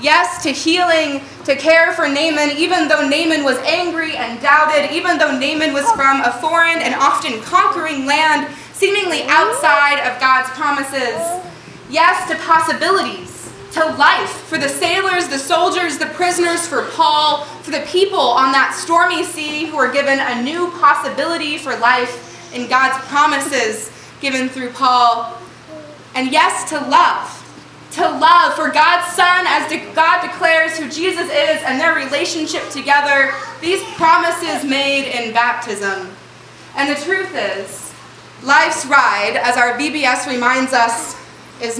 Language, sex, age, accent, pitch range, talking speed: English, female, 20-39, American, 260-330 Hz, 145 wpm